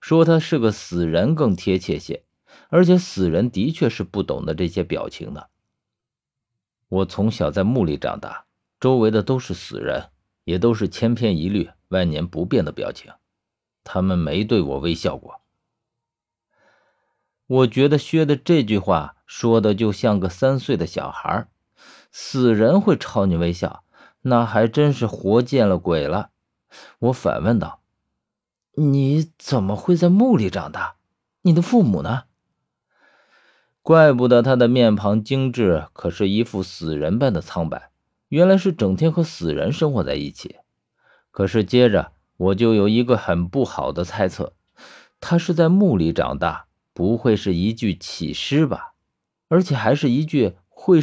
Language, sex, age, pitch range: Chinese, male, 50-69, 100-155 Hz